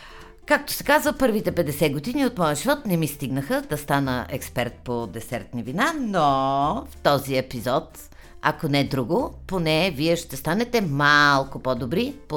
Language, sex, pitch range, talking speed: Bulgarian, female, 125-175 Hz, 160 wpm